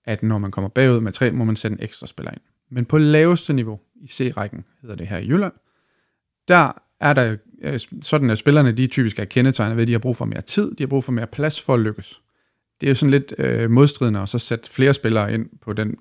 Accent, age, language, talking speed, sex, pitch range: native, 30-49, Danish, 260 wpm, male, 105-130 Hz